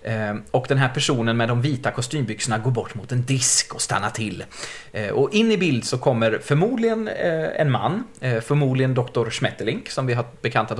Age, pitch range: 30-49, 115-150 Hz